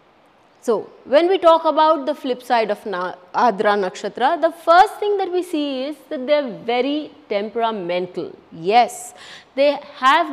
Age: 30-49